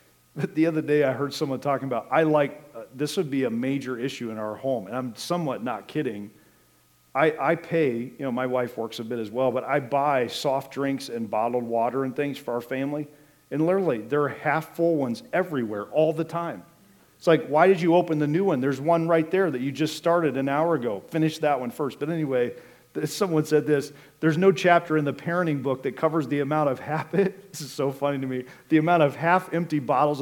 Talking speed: 230 wpm